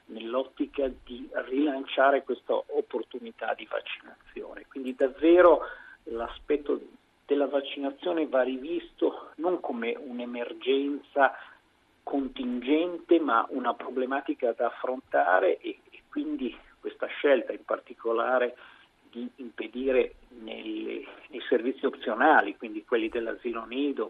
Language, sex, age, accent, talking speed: Italian, male, 50-69, native, 95 wpm